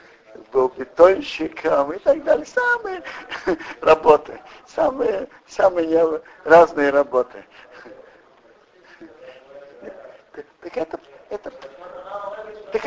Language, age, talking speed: Russian, 50-69, 70 wpm